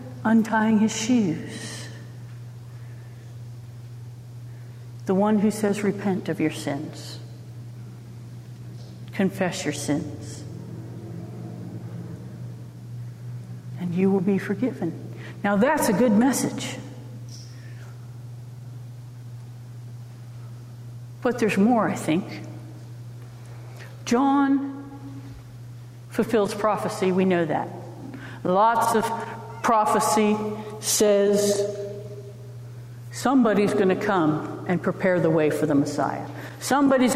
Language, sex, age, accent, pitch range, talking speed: English, female, 60-79, American, 120-195 Hz, 80 wpm